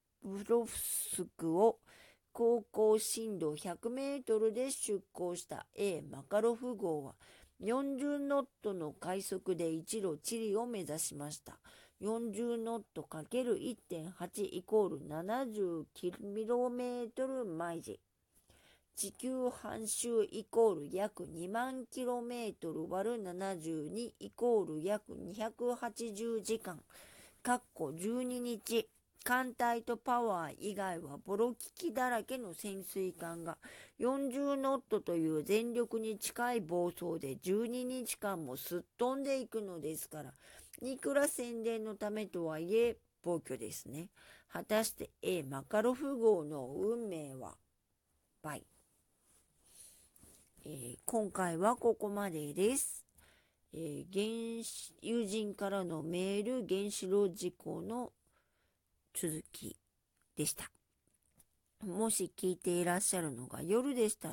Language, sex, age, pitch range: Japanese, female, 50-69, 175-235 Hz